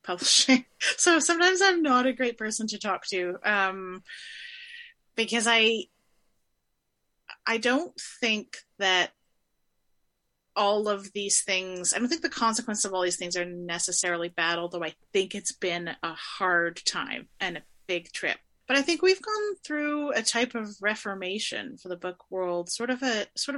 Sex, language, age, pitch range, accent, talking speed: female, English, 30-49, 180-235 Hz, American, 165 wpm